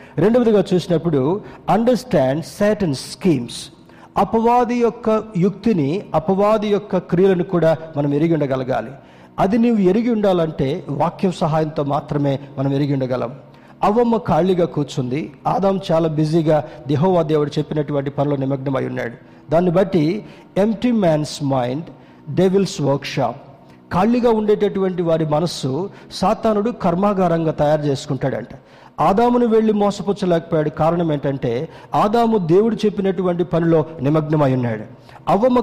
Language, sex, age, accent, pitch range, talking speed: Telugu, male, 50-69, native, 150-200 Hz, 110 wpm